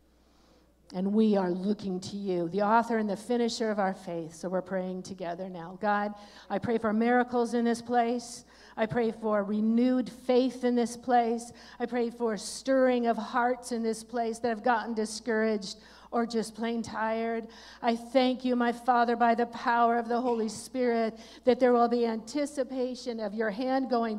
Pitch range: 220-255 Hz